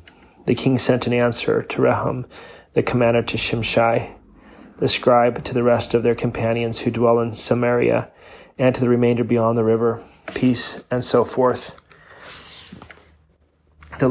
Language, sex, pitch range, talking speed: English, male, 115-125 Hz, 150 wpm